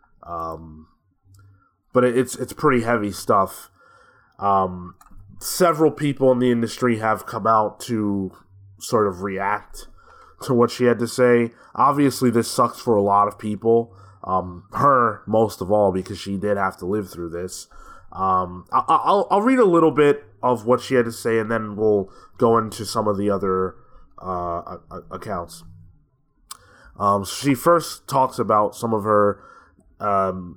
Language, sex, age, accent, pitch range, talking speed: English, male, 20-39, American, 95-120 Hz, 160 wpm